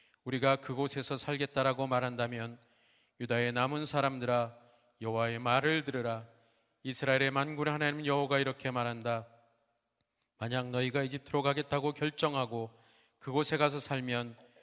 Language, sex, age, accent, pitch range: Korean, male, 30-49, native, 120-145 Hz